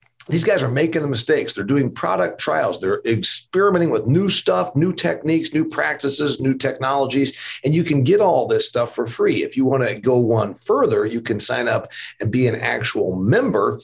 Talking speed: 200 wpm